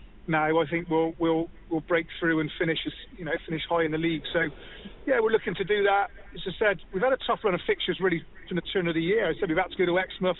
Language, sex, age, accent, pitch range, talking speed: English, male, 30-49, British, 165-185 Hz, 295 wpm